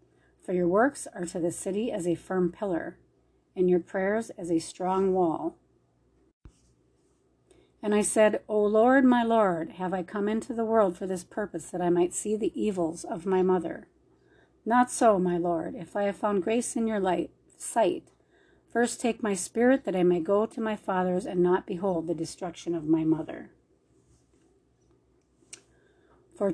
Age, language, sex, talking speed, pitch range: 40-59, English, female, 170 wpm, 175-225 Hz